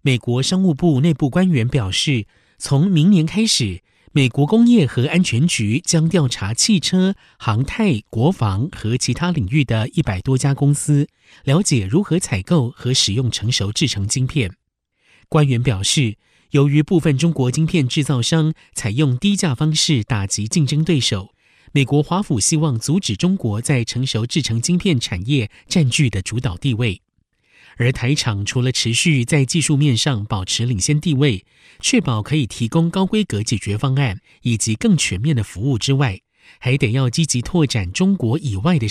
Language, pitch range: Chinese, 115-160 Hz